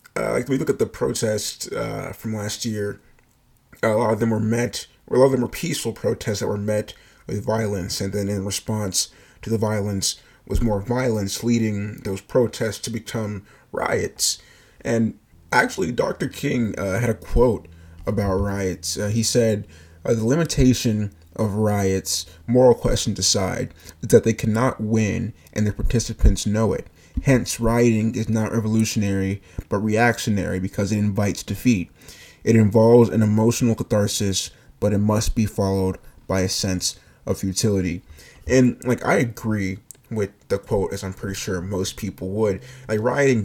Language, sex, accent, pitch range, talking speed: English, male, American, 100-120 Hz, 165 wpm